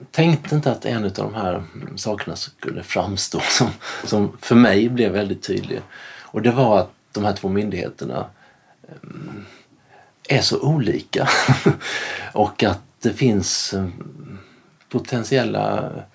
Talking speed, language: 120 wpm, Swedish